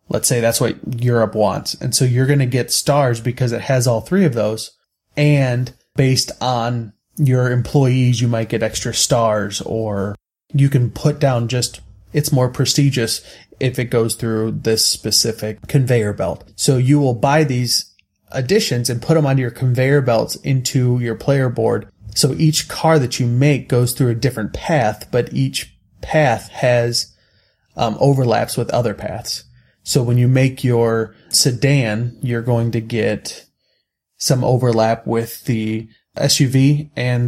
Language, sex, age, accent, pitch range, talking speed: English, male, 30-49, American, 115-140 Hz, 160 wpm